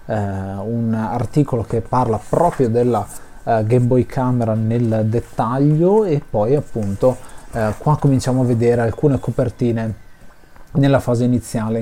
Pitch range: 110-135 Hz